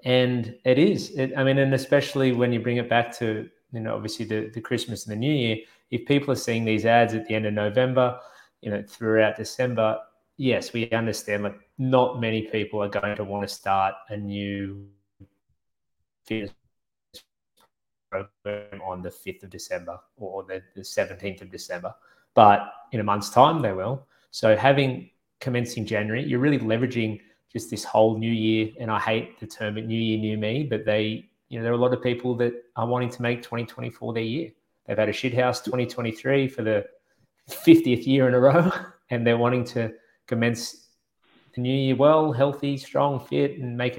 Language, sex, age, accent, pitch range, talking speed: English, male, 20-39, Australian, 110-125 Hz, 190 wpm